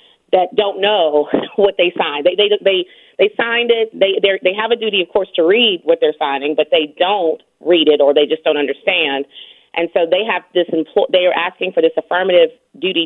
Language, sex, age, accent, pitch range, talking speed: English, female, 30-49, American, 155-205 Hz, 215 wpm